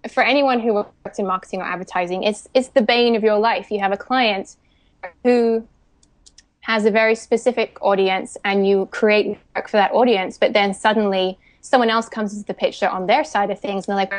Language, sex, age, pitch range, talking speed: English, female, 20-39, 195-240 Hz, 205 wpm